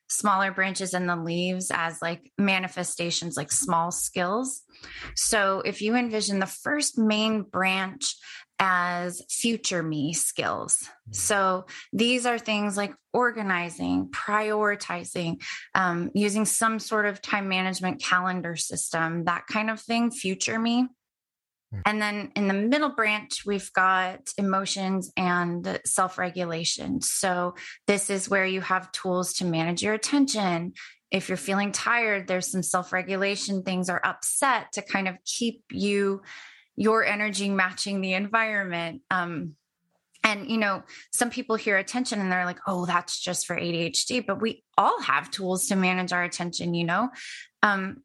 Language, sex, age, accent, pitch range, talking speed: English, female, 20-39, American, 180-215 Hz, 145 wpm